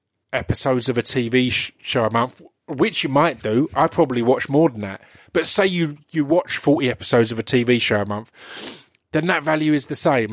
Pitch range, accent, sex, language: 120-150 Hz, British, male, English